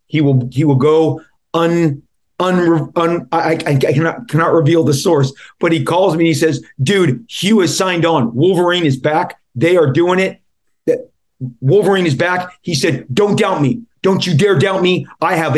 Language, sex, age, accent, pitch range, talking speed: English, male, 30-49, American, 140-175 Hz, 195 wpm